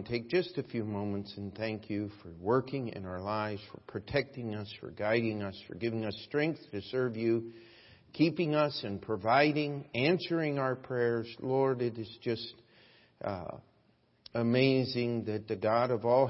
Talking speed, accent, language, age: 160 wpm, American, English, 50-69